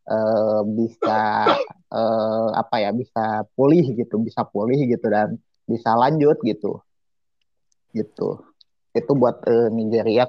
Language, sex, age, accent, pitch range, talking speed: Indonesian, male, 30-49, native, 110-125 Hz, 115 wpm